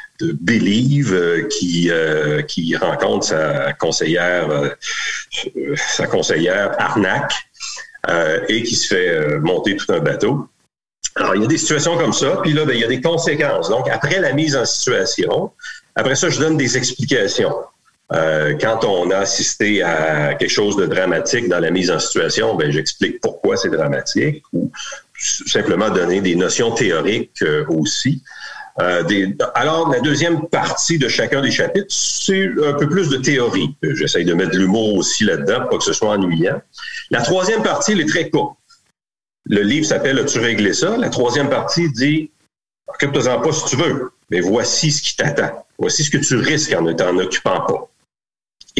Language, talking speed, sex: French, 185 wpm, male